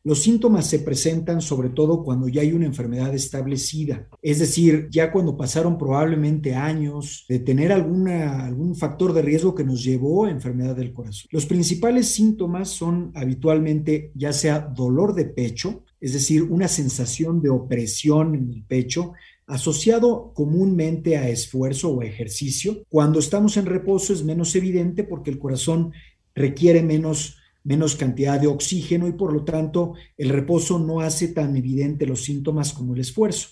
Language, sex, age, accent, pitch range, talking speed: Spanish, male, 50-69, Mexican, 140-175 Hz, 160 wpm